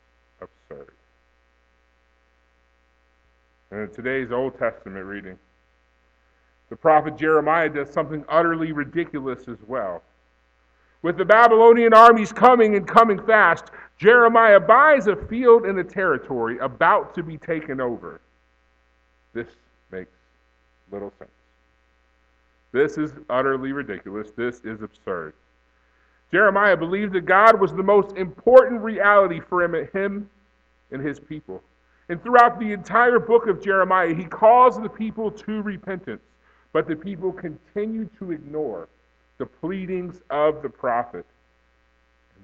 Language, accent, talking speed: English, American, 120 wpm